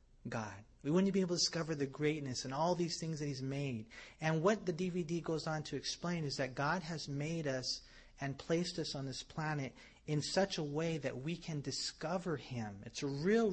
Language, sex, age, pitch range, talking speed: English, male, 30-49, 130-175 Hz, 215 wpm